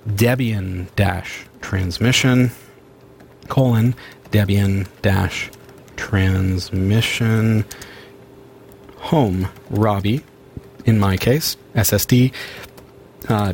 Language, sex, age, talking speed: English, male, 40-59, 60 wpm